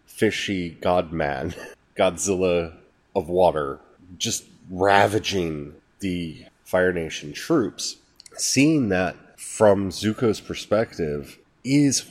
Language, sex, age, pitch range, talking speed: English, male, 30-49, 90-110 Hz, 85 wpm